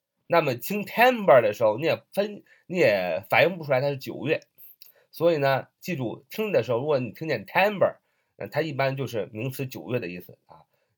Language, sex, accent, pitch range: Chinese, male, native, 135-210 Hz